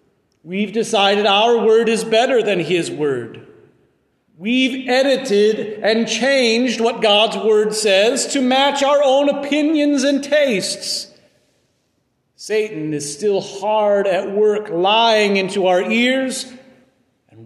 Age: 40-59